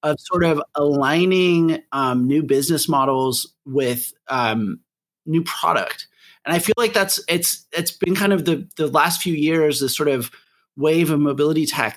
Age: 30-49